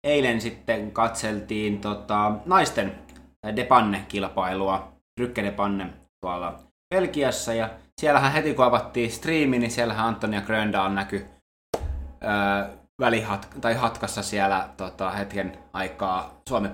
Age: 20-39